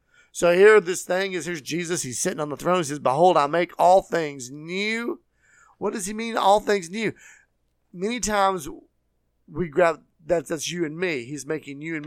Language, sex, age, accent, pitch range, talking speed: English, male, 40-59, American, 135-180 Hz, 195 wpm